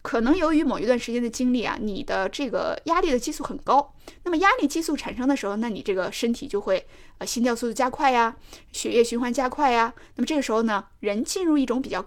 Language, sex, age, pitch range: Chinese, female, 20-39, 225-300 Hz